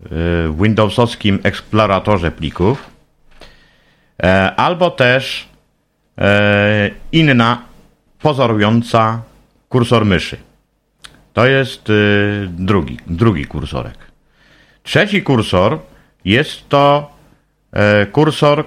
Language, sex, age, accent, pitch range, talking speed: Polish, male, 50-69, native, 105-145 Hz, 65 wpm